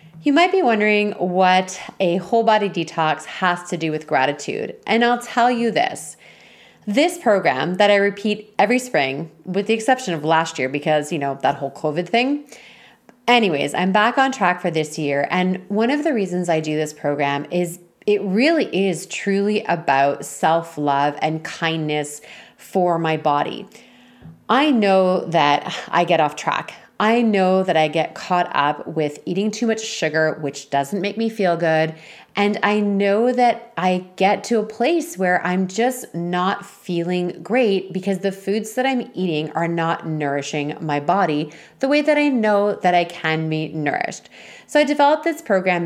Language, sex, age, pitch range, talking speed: English, female, 30-49, 160-225 Hz, 175 wpm